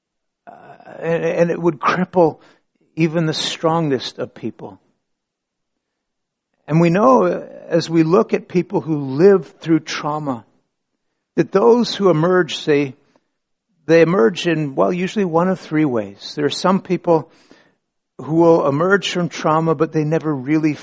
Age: 60-79